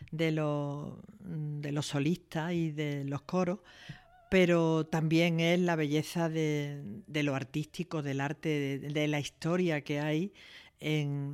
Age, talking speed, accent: 50-69, 145 wpm, Spanish